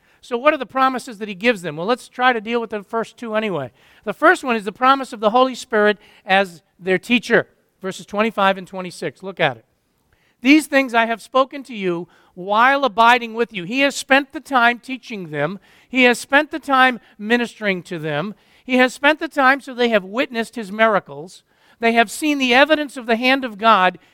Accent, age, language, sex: American, 50-69, English, male